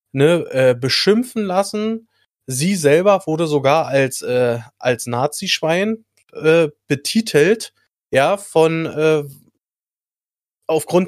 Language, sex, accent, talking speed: German, male, German, 95 wpm